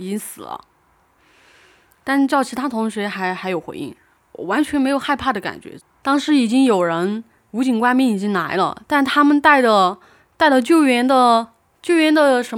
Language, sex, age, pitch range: Chinese, female, 20-39, 195-265 Hz